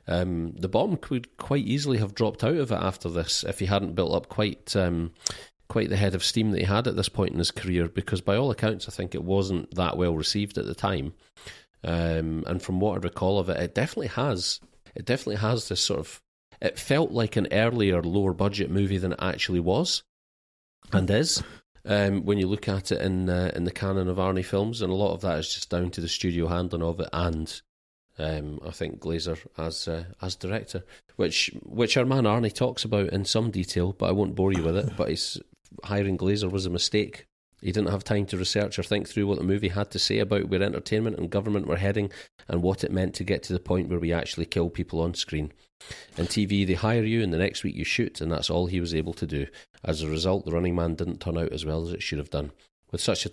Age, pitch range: 40-59, 85-100 Hz